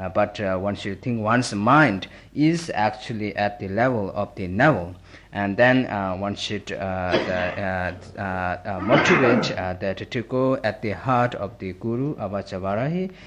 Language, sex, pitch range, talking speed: Italian, male, 95-125 Hz, 175 wpm